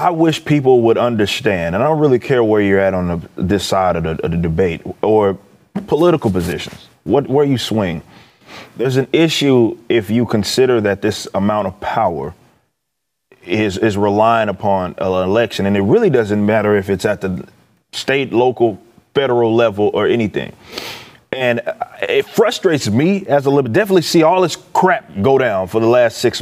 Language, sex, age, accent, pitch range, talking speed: English, male, 30-49, American, 105-135 Hz, 180 wpm